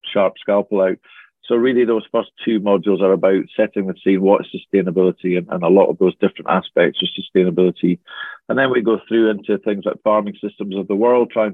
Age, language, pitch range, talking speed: 50-69, English, 95-110 Hz, 210 wpm